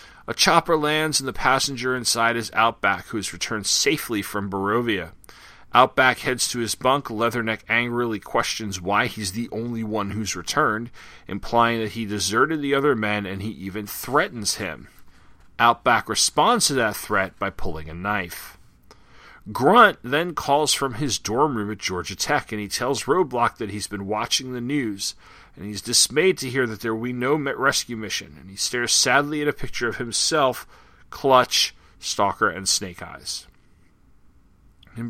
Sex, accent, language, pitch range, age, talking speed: male, American, English, 100-130 Hz, 40-59, 165 wpm